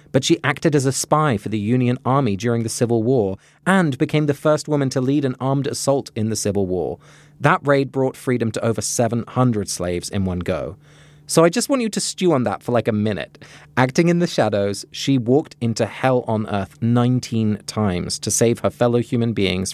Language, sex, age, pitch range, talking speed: English, male, 30-49, 105-145 Hz, 215 wpm